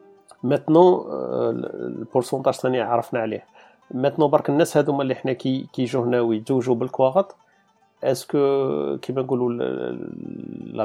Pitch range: 115-140 Hz